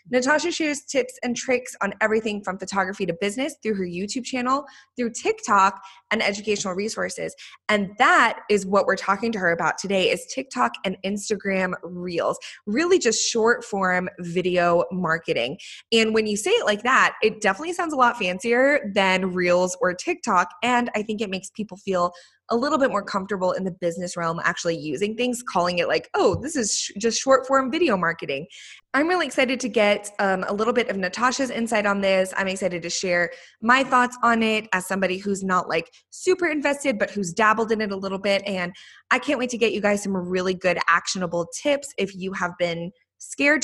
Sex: female